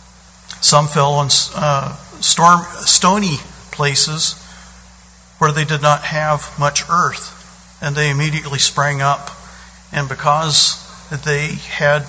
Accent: American